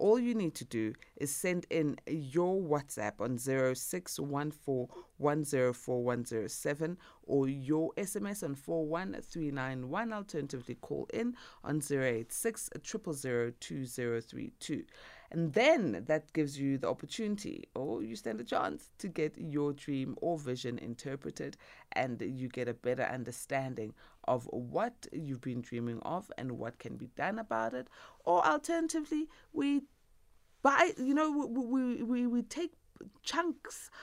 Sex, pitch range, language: female, 125-195 Hz, English